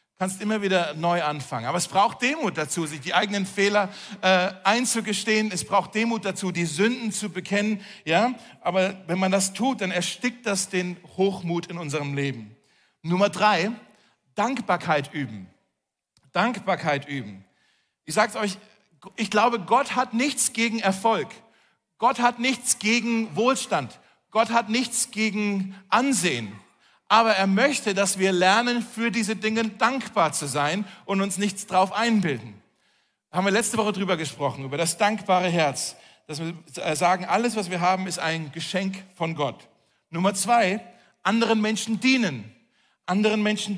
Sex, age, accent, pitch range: male, 40-59, German, 180-225 Hz